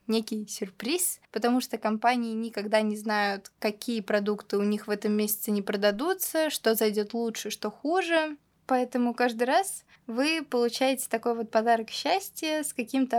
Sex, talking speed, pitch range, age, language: female, 150 wpm, 215-255 Hz, 20-39, Russian